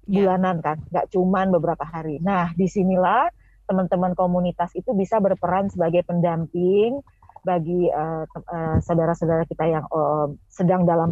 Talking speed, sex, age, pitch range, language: 130 wpm, female, 30-49, 170-205 Hz, Indonesian